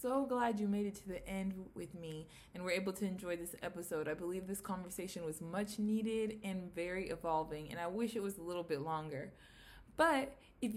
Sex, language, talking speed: female, English, 210 wpm